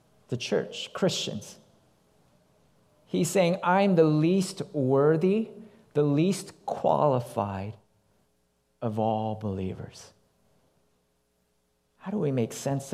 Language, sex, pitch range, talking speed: English, male, 145-210 Hz, 95 wpm